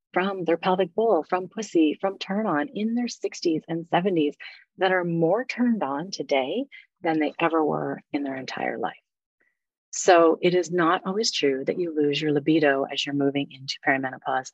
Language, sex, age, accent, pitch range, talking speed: English, female, 30-49, American, 150-190 Hz, 180 wpm